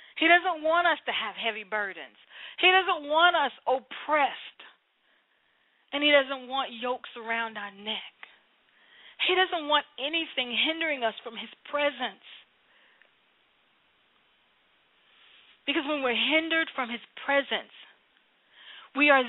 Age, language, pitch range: 40-59, English, 220-285 Hz